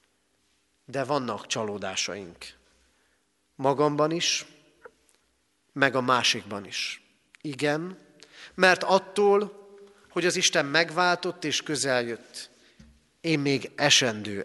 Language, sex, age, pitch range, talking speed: Hungarian, male, 40-59, 110-170 Hz, 85 wpm